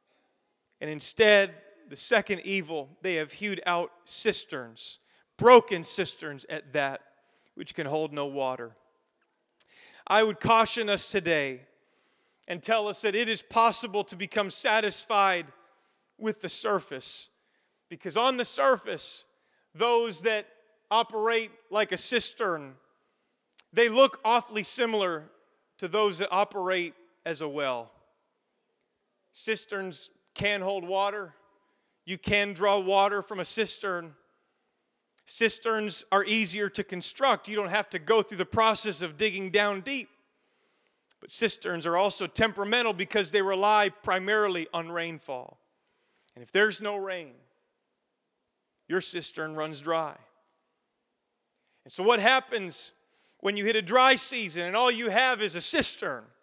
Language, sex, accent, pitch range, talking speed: English, male, American, 175-220 Hz, 130 wpm